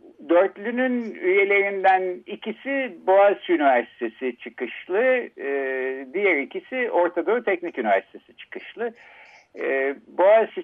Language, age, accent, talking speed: Turkish, 60-79, native, 80 wpm